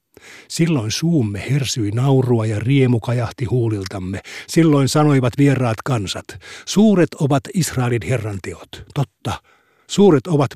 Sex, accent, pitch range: male, native, 115-155 Hz